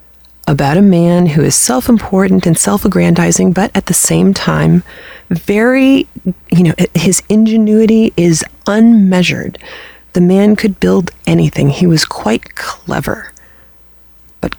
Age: 30-49